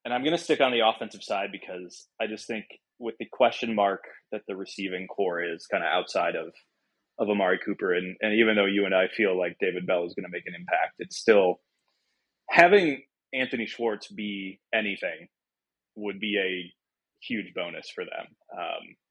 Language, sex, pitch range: English, male, 100-155 Hz